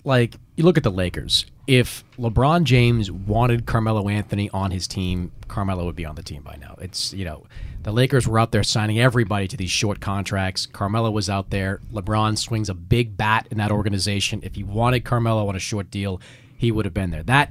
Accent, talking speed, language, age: American, 215 wpm, English, 30-49